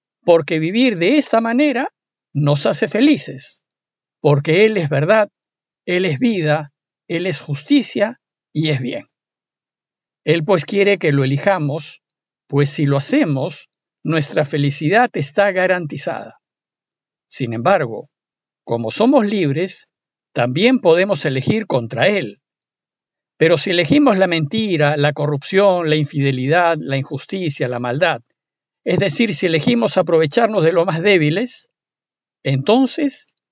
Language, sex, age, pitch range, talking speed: Spanish, male, 50-69, 150-210 Hz, 120 wpm